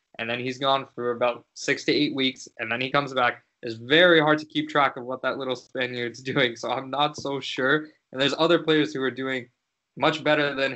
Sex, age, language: male, 20-39, English